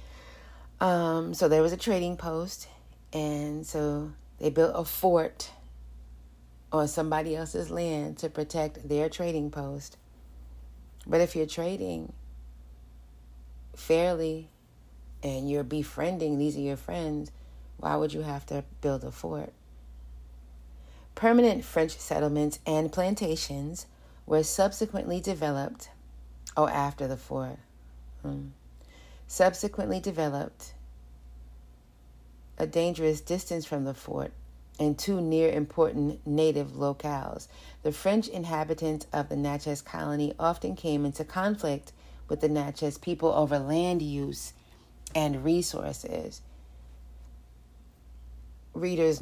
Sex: female